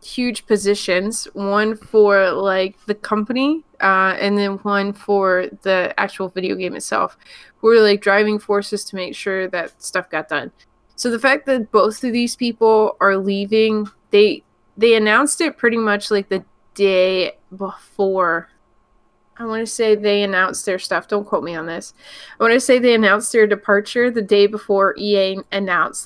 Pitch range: 195-235 Hz